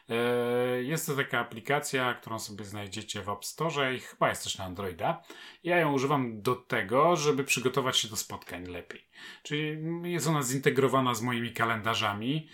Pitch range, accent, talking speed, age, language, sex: 110-140 Hz, native, 165 wpm, 30-49, Polish, male